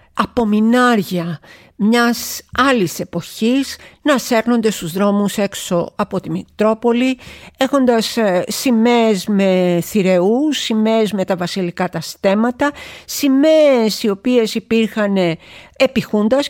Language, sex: Greek, female